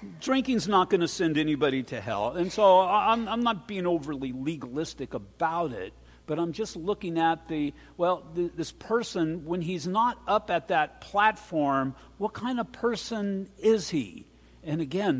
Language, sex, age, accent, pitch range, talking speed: English, male, 50-69, American, 145-190 Hz, 170 wpm